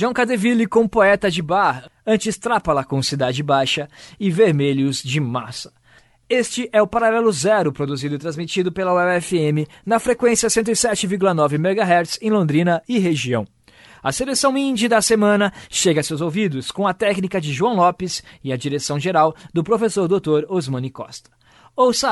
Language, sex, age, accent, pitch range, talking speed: Portuguese, male, 20-39, Brazilian, 150-225 Hz, 150 wpm